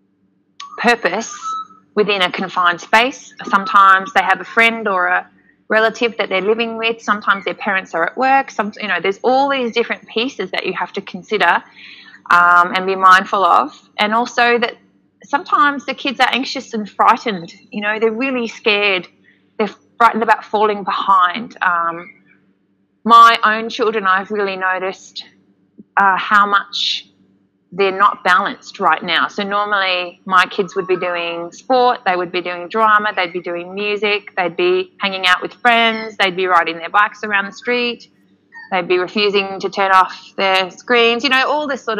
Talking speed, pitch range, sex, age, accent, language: 170 wpm, 185-230 Hz, female, 20-39, Australian, English